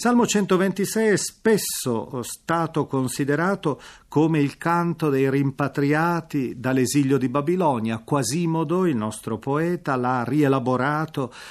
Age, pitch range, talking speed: 40-59, 125-165 Hz, 110 wpm